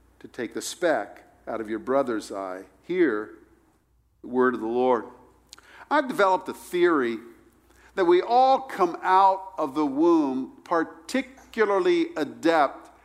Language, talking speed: English, 135 wpm